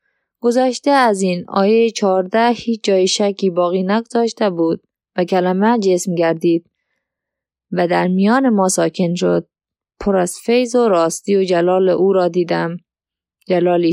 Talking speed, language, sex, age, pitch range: 140 wpm, Persian, female, 20-39, 180-235 Hz